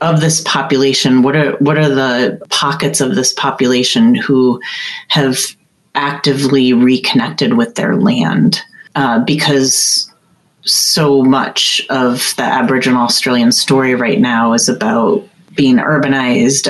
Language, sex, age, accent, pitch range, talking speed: English, female, 30-49, American, 130-210 Hz, 120 wpm